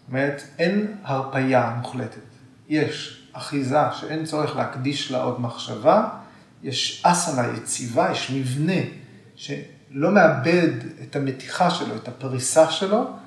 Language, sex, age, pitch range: Hebrew, male, 40-59, 130-175 Hz